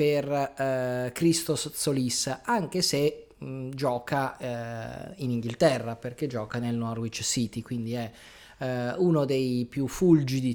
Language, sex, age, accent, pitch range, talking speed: Italian, male, 30-49, native, 115-135 Hz, 125 wpm